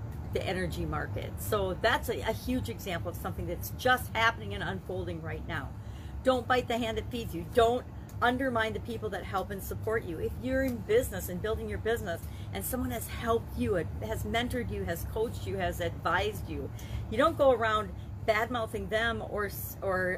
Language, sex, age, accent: English, female, 40-59, American